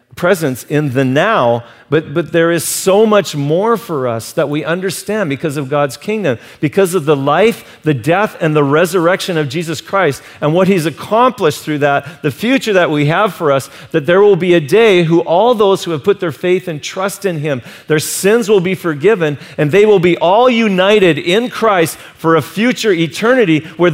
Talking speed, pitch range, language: 205 wpm, 135-190 Hz, English